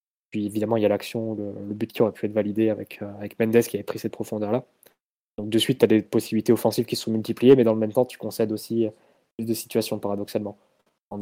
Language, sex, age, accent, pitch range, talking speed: French, male, 20-39, French, 105-115 Hz, 240 wpm